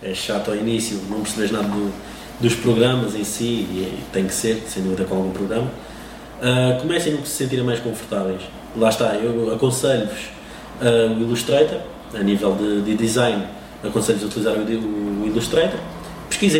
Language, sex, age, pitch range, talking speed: Portuguese, male, 20-39, 110-125 Hz, 175 wpm